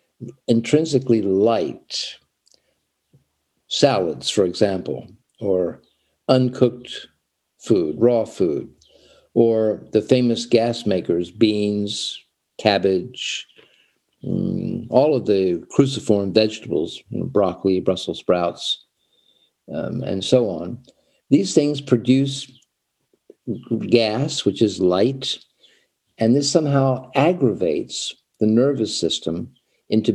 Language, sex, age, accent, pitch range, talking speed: English, male, 50-69, American, 95-125 Hz, 90 wpm